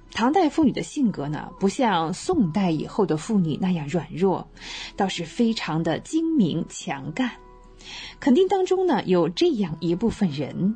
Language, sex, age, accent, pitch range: Chinese, female, 20-39, native, 180-260 Hz